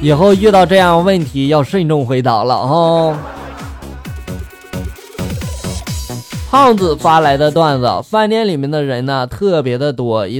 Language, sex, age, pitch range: Chinese, male, 20-39, 125-195 Hz